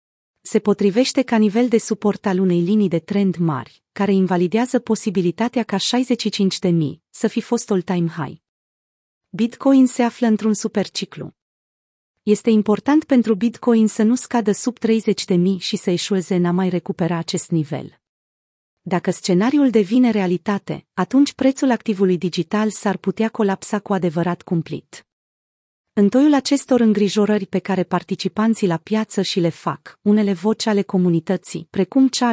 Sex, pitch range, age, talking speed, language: female, 180-225 Hz, 30-49, 145 wpm, Romanian